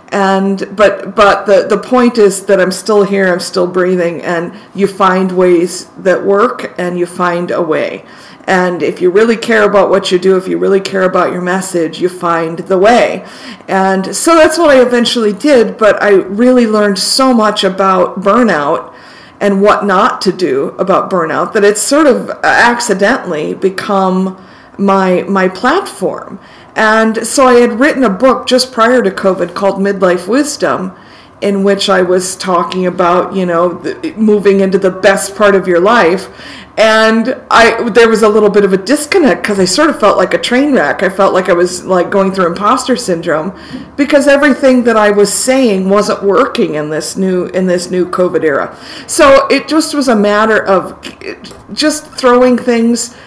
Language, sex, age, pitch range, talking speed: English, female, 50-69, 185-230 Hz, 185 wpm